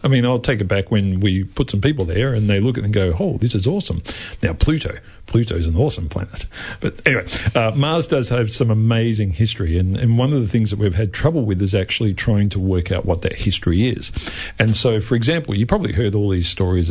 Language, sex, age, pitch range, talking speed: English, male, 40-59, 95-130 Hz, 250 wpm